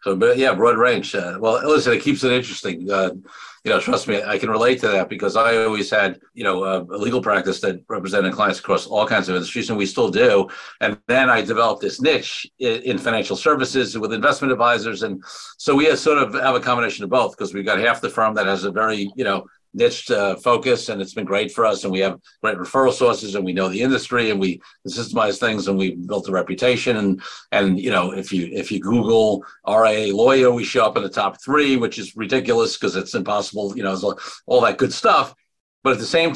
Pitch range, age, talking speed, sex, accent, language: 100-125 Hz, 50-69, 235 wpm, male, American, English